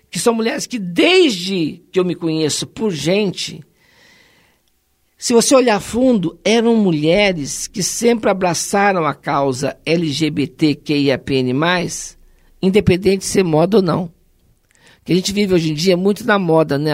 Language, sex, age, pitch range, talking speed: Portuguese, male, 50-69, 155-215 Hz, 140 wpm